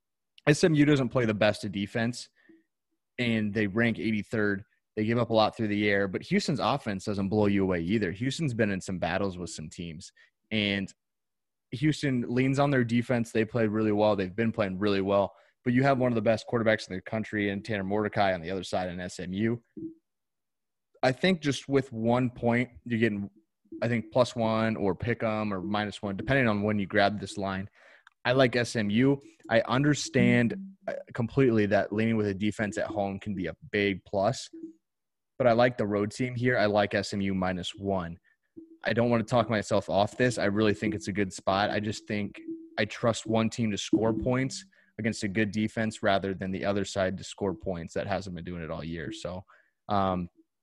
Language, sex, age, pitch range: English, male, 20-39, 100-120 Hz